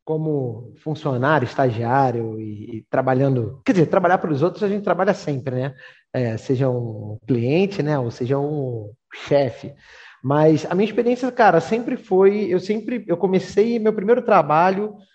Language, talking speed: Portuguese, 160 wpm